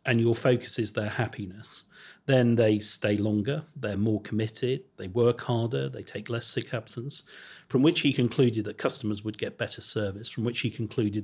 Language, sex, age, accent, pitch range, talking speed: English, male, 40-59, British, 110-130 Hz, 185 wpm